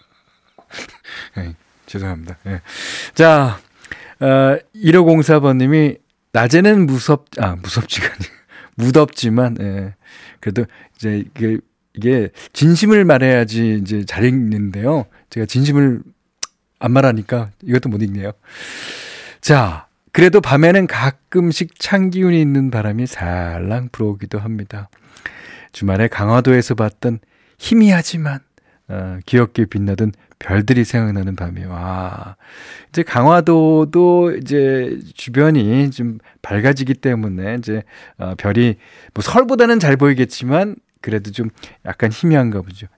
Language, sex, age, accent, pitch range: Korean, male, 40-59, native, 100-145 Hz